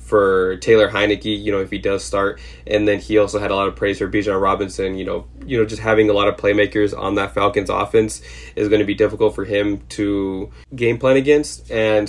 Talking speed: 235 wpm